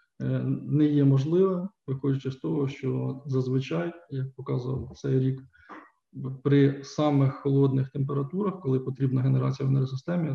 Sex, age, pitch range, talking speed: male, 20-39, 130-145 Hz, 120 wpm